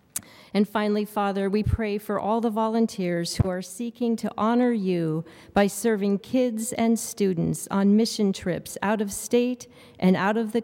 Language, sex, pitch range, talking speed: English, female, 175-215 Hz, 170 wpm